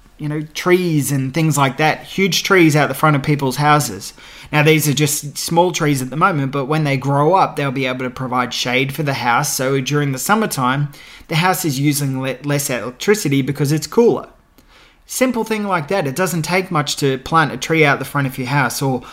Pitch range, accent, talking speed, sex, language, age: 135-160 Hz, Australian, 220 wpm, male, English, 20-39